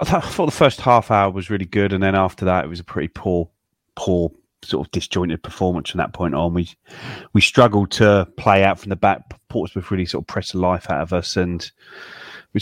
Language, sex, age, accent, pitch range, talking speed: English, male, 30-49, British, 90-105 Hz, 225 wpm